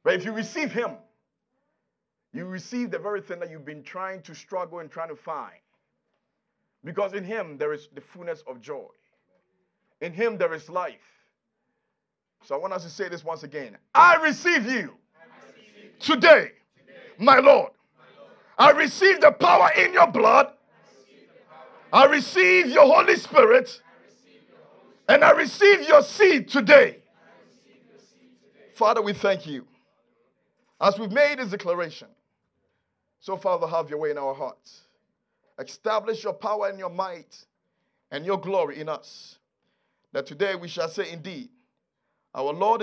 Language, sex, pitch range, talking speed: English, male, 185-300 Hz, 145 wpm